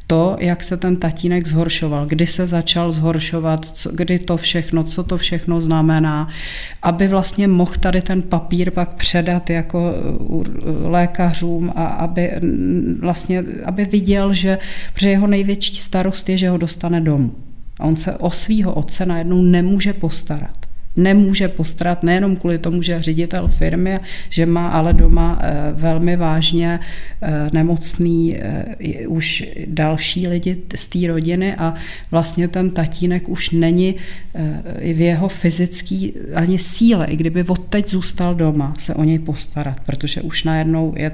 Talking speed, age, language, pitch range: 140 wpm, 40-59, Czech, 160-180 Hz